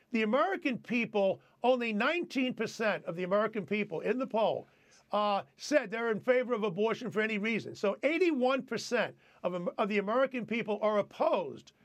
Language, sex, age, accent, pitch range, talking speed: English, male, 50-69, American, 215-260 Hz, 165 wpm